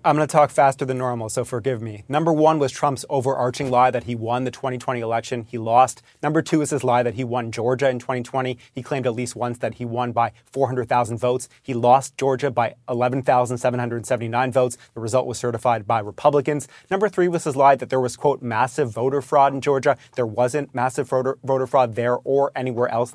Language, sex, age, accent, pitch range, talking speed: English, male, 30-49, American, 125-150 Hz, 210 wpm